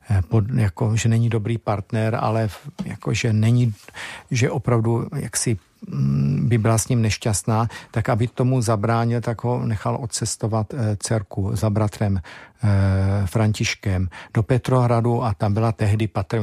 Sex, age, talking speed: male, 50-69, 140 wpm